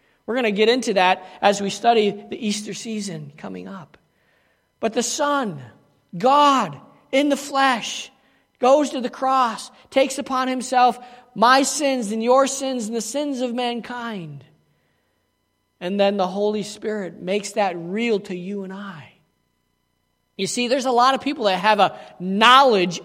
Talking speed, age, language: 160 wpm, 40-59, English